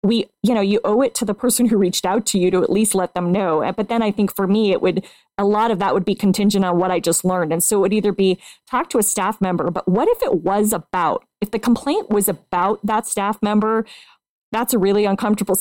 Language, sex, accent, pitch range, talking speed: English, female, American, 185-215 Hz, 265 wpm